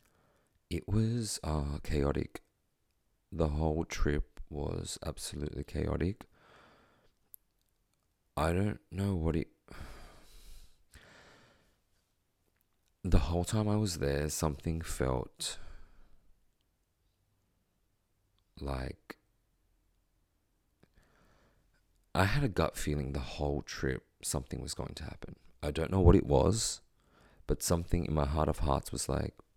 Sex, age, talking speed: male, 30-49, 105 wpm